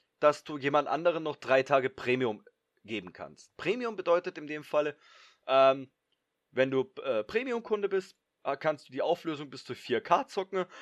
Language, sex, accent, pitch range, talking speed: German, male, German, 130-175 Hz, 160 wpm